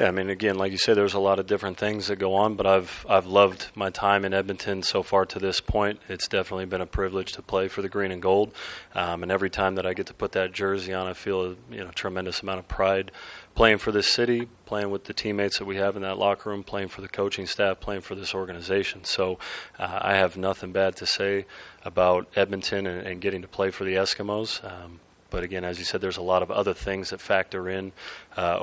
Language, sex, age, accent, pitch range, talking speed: English, male, 30-49, American, 90-100 Hz, 255 wpm